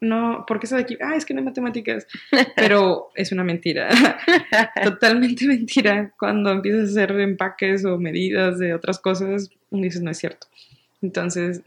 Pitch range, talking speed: 185-205 Hz, 165 wpm